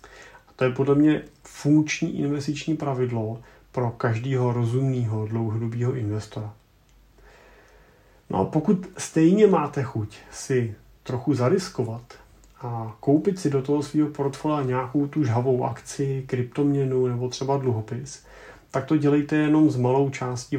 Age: 40-59